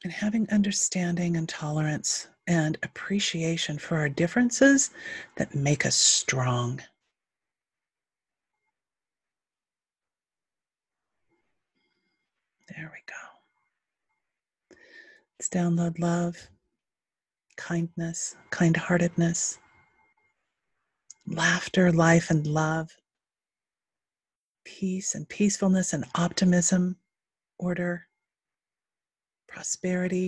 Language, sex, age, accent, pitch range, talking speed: English, female, 40-59, American, 155-190 Hz, 65 wpm